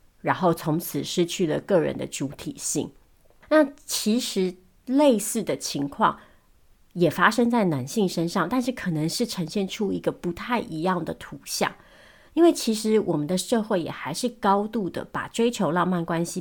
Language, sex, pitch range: Chinese, female, 165-200 Hz